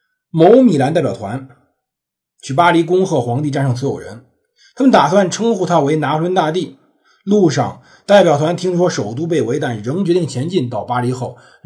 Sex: male